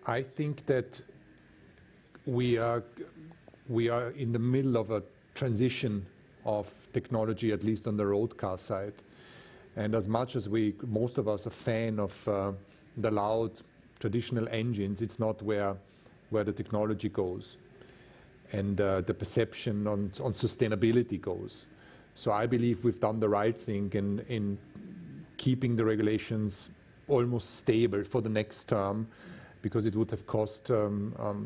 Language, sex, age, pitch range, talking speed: English, male, 40-59, 105-120 Hz, 155 wpm